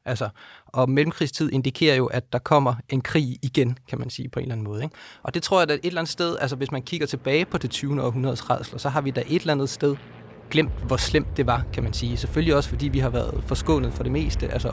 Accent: native